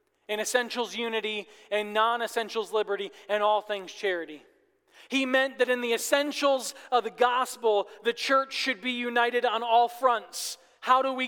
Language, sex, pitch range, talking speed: English, male, 210-255 Hz, 160 wpm